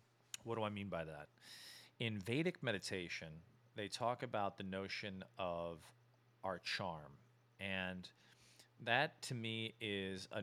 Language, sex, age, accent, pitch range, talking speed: English, male, 40-59, American, 100-120 Hz, 130 wpm